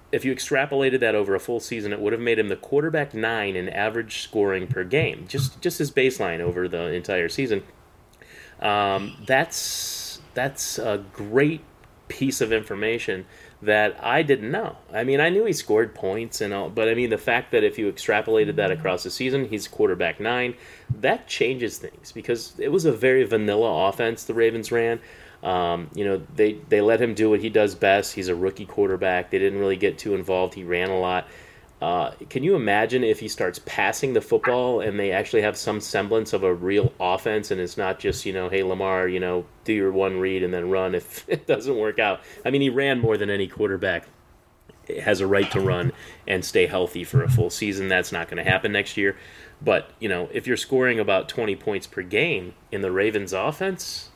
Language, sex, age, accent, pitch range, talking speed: English, male, 30-49, American, 95-130 Hz, 210 wpm